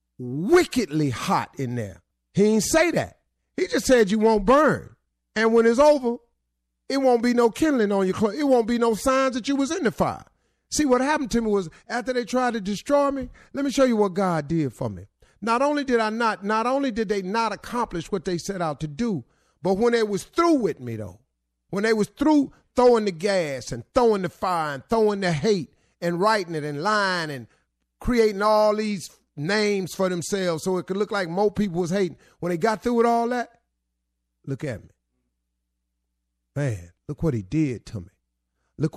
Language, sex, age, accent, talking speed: English, male, 40-59, American, 210 wpm